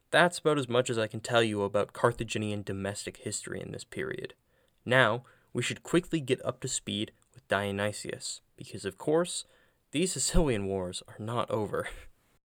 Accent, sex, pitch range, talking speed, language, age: American, male, 105-140 Hz, 170 wpm, English, 20-39